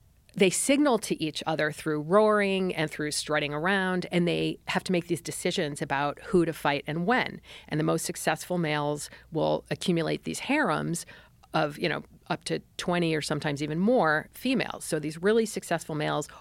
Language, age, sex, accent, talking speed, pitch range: English, 50-69, female, American, 180 wpm, 150-185 Hz